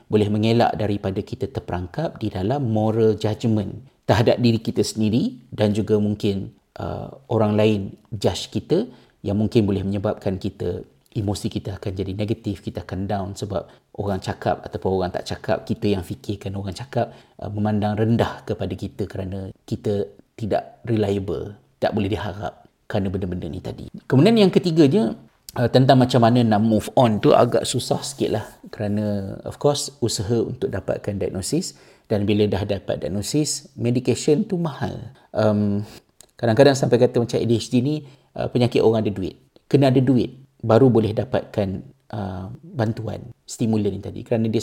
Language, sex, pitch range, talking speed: Malay, male, 105-120 Hz, 160 wpm